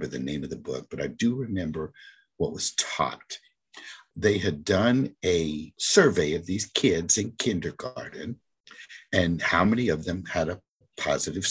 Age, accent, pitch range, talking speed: 50-69, American, 85-140 Hz, 155 wpm